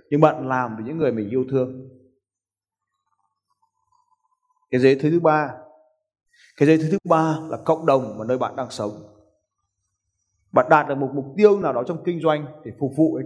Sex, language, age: male, Vietnamese, 20-39